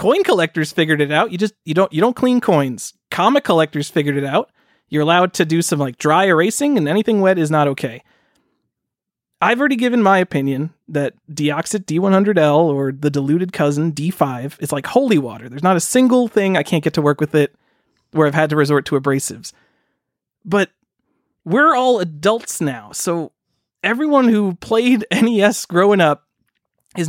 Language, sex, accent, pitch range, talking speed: English, male, American, 155-225 Hz, 180 wpm